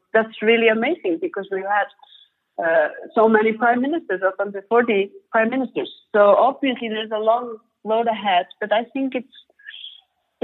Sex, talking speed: female, 155 wpm